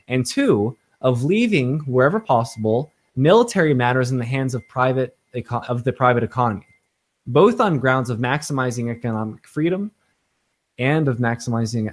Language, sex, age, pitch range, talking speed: English, male, 20-39, 115-150 Hz, 135 wpm